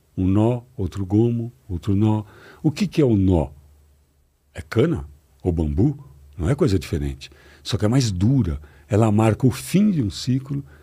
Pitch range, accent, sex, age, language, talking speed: 85-135 Hz, Brazilian, male, 60-79, Portuguese, 175 wpm